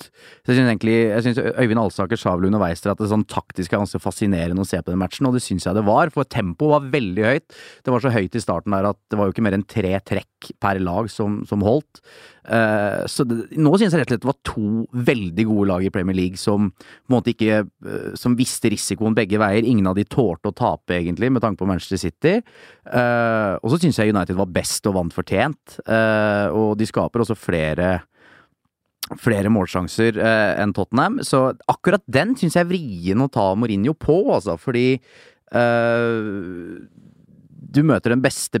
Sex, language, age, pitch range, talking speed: male, English, 30-49, 95-120 Hz, 210 wpm